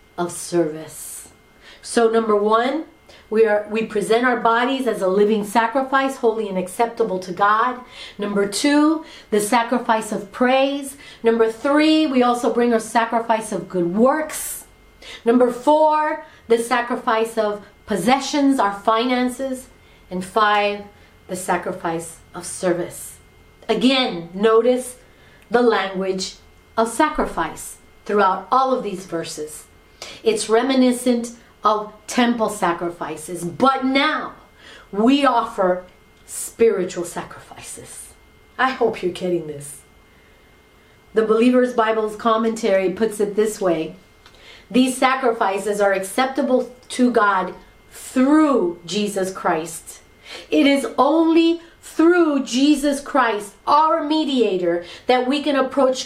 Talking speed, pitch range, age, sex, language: 110 wpm, 195-255 Hz, 40-59, female, English